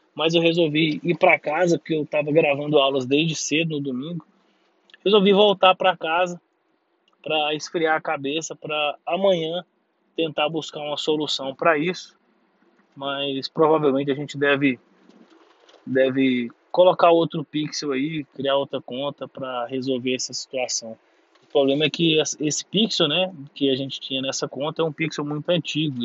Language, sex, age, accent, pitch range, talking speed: Portuguese, male, 20-39, Brazilian, 135-165 Hz, 150 wpm